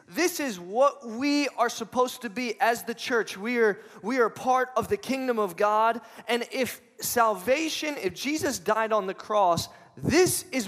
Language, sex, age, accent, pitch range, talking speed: English, male, 20-39, American, 170-230 Hz, 180 wpm